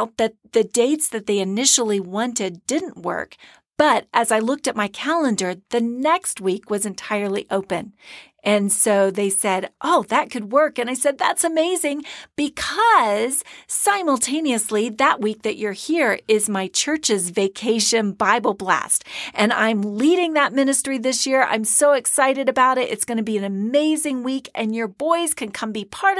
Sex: female